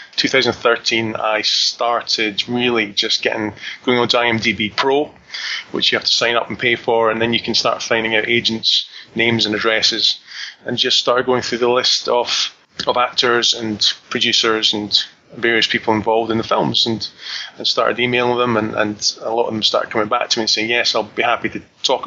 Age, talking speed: 20-39, 200 wpm